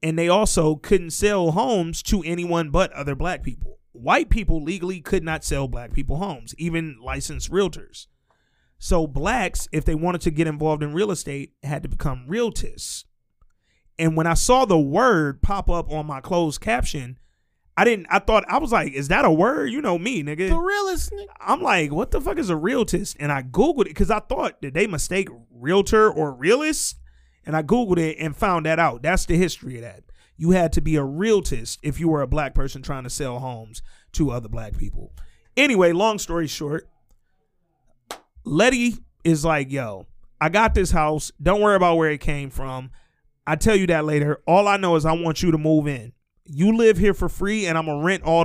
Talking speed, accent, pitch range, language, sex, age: 205 wpm, American, 140-185 Hz, English, male, 30-49